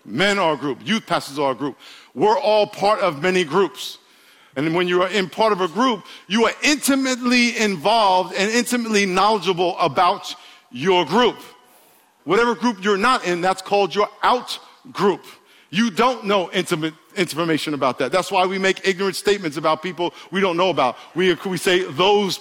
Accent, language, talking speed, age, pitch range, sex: American, English, 175 wpm, 50-69, 185-235 Hz, male